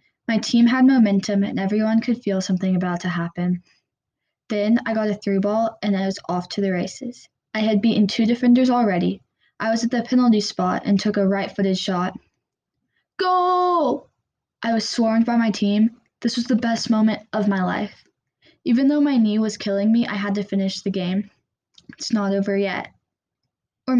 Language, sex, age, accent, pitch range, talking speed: English, female, 10-29, American, 195-230 Hz, 190 wpm